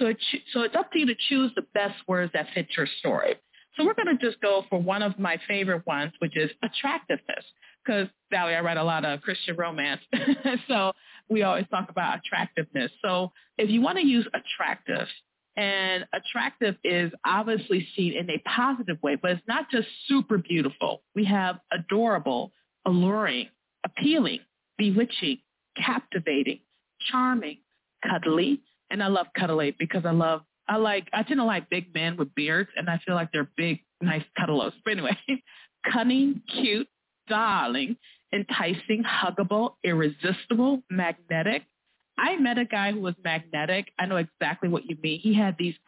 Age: 40-59